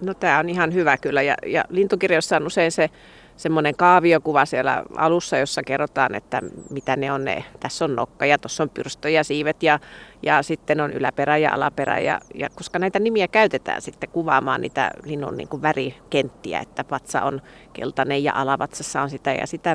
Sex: female